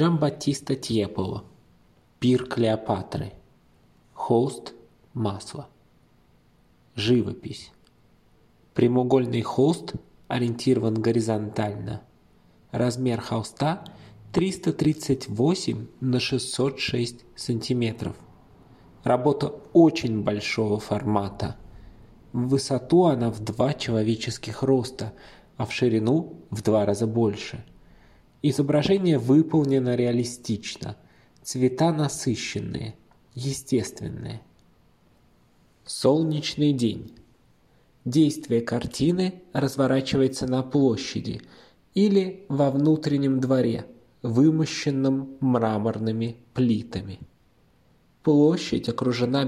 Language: Russian